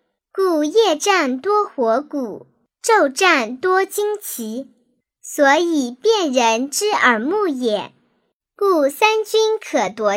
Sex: male